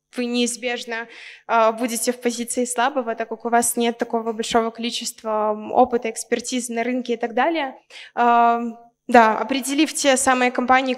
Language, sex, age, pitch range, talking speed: Russian, female, 20-39, 235-255 Hz, 155 wpm